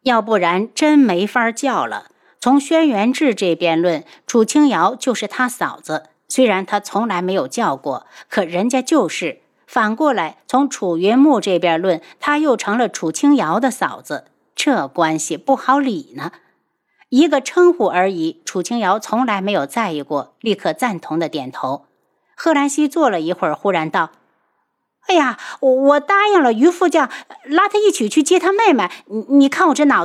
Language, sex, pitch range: Chinese, female, 200-290 Hz